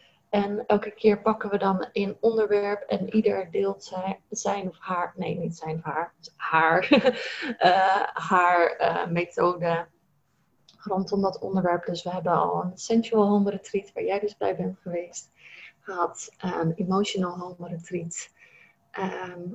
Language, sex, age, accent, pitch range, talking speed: Dutch, female, 20-39, Dutch, 180-225 Hz, 145 wpm